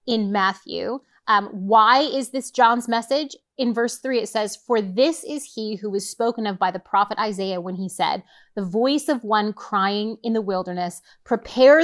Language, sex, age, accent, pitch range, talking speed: English, female, 30-49, American, 210-255 Hz, 190 wpm